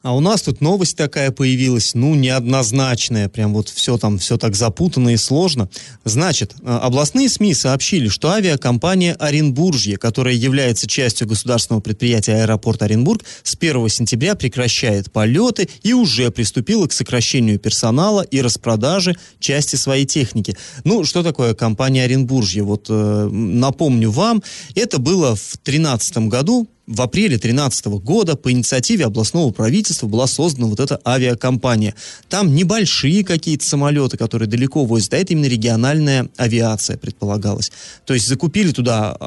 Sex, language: male, Russian